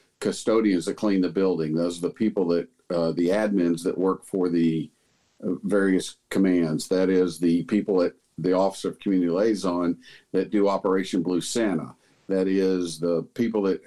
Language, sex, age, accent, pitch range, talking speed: English, male, 50-69, American, 85-110 Hz, 170 wpm